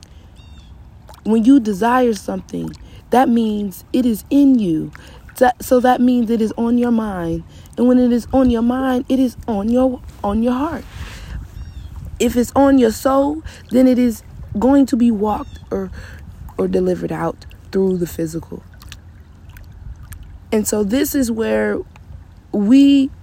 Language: English